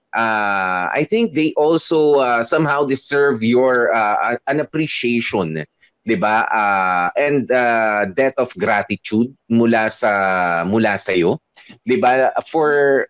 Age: 20-39